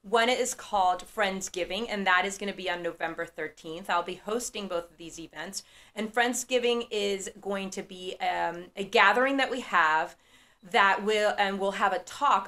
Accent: American